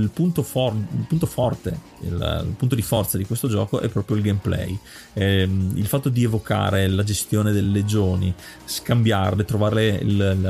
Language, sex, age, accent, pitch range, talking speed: Italian, male, 30-49, native, 100-120 Hz, 170 wpm